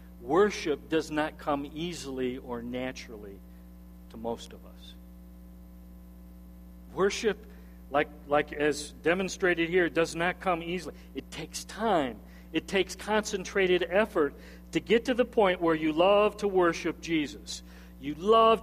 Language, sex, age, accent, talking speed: English, male, 50-69, American, 130 wpm